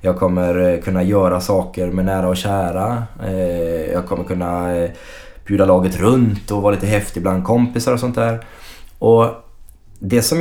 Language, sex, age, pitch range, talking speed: Swedish, male, 20-39, 90-110 Hz, 155 wpm